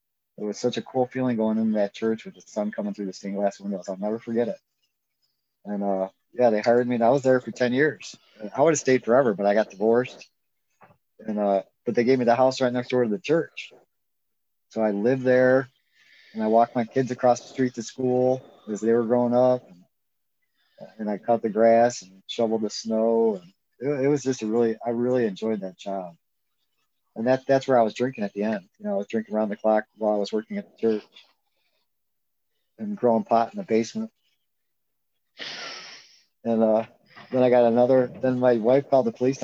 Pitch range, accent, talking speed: 105-125 Hz, American, 220 wpm